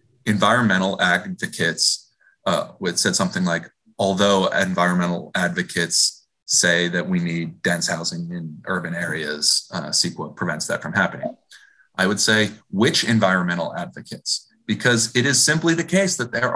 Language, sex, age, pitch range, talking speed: English, male, 30-49, 100-150 Hz, 140 wpm